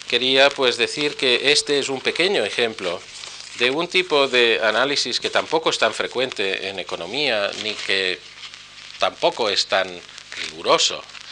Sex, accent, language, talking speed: male, Spanish, Spanish, 145 wpm